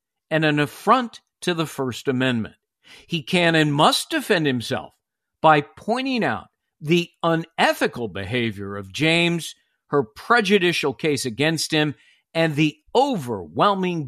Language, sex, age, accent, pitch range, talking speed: English, male, 50-69, American, 135-185 Hz, 125 wpm